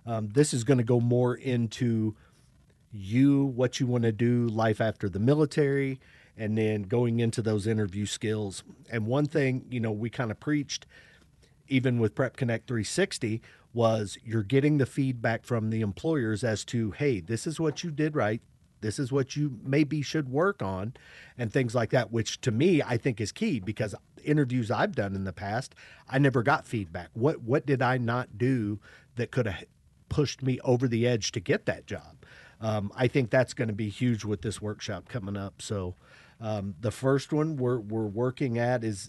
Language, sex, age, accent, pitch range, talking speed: English, male, 40-59, American, 110-135 Hz, 195 wpm